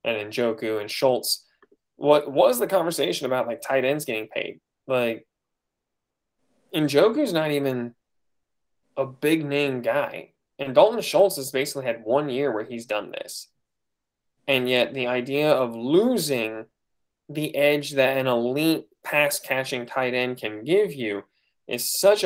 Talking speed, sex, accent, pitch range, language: 145 wpm, male, American, 115-145 Hz, English